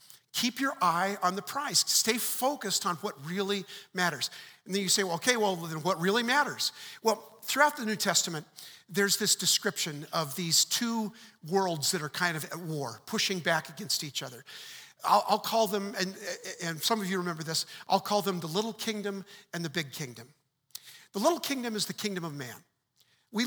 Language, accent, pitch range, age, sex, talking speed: English, American, 155-210 Hz, 50-69, male, 195 wpm